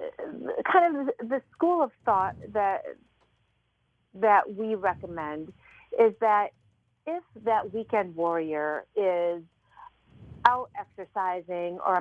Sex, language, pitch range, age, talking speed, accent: female, English, 175-225 Hz, 40-59, 100 wpm, American